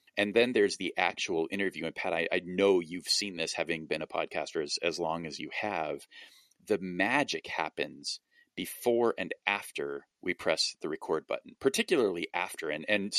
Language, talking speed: English, 175 wpm